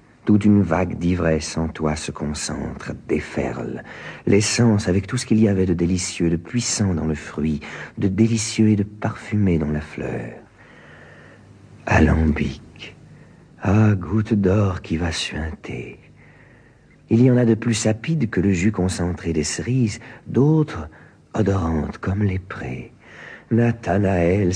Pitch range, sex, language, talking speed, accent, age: 85-120 Hz, male, French, 140 wpm, French, 50-69